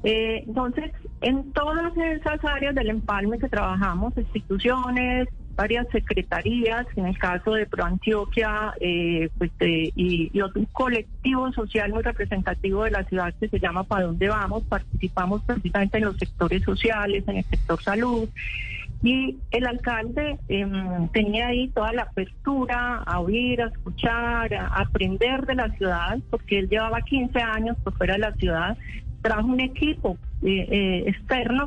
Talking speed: 155 wpm